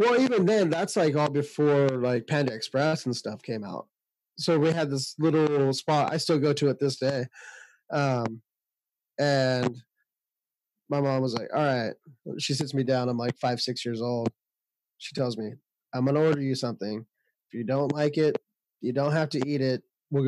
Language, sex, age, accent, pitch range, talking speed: English, male, 20-39, American, 125-150 Hz, 200 wpm